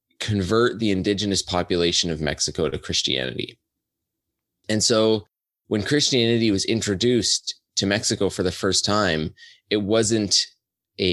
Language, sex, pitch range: English, male, 85-105 Hz